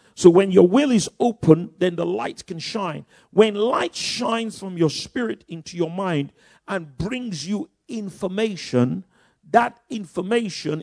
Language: English